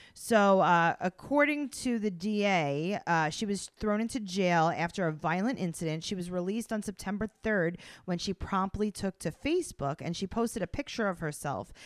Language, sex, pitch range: English, female, 165-220 Hz